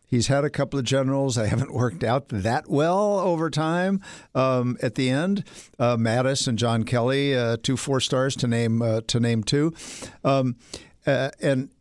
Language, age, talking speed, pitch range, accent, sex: English, 60-79, 185 wpm, 120-155 Hz, American, male